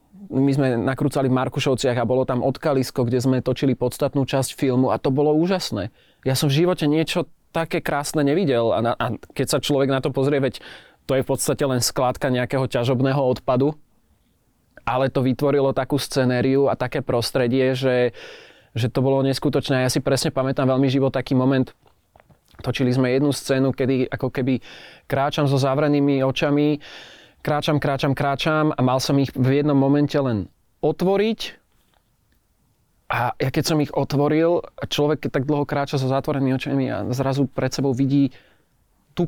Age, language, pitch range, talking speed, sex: 20-39, Slovak, 130-150 Hz, 170 wpm, male